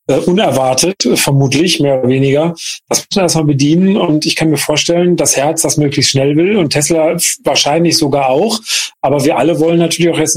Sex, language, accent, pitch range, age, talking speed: male, German, German, 145-170 Hz, 40-59, 190 wpm